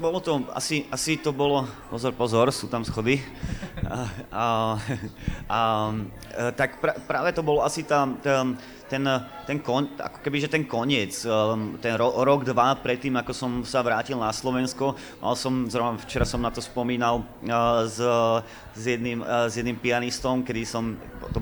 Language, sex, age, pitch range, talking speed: Slovak, male, 30-49, 115-130 Hz, 160 wpm